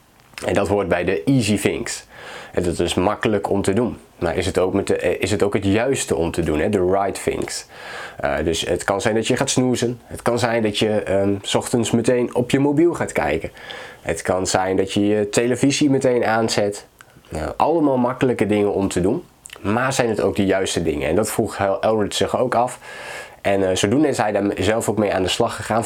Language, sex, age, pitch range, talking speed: Dutch, male, 20-39, 100-125 Hz, 225 wpm